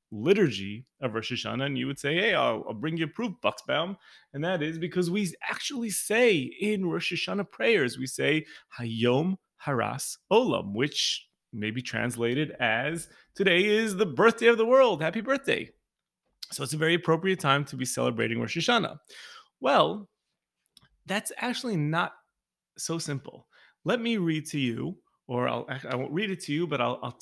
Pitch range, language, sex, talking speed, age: 135-195 Hz, English, male, 170 wpm, 30-49